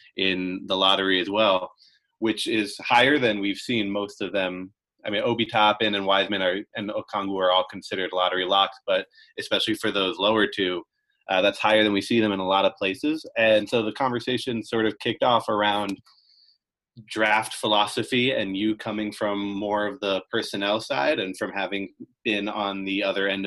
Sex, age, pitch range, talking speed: male, 20-39, 100-120 Hz, 185 wpm